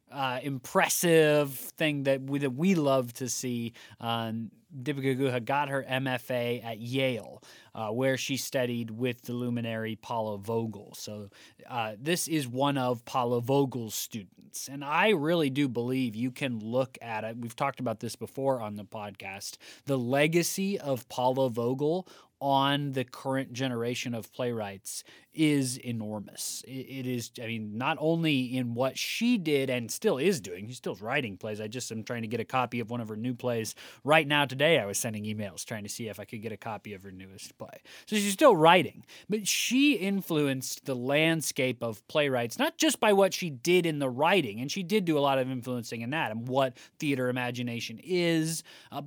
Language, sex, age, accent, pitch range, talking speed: English, male, 20-39, American, 115-145 Hz, 190 wpm